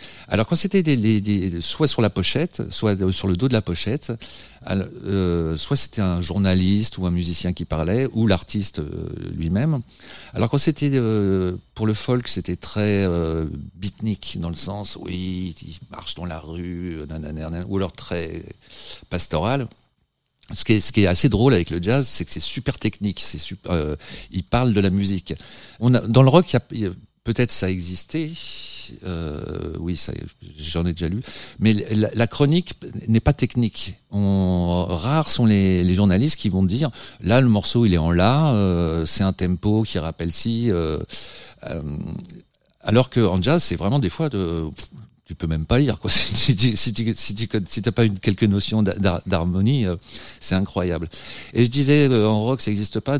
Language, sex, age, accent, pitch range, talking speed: French, male, 50-69, French, 90-120 Hz, 190 wpm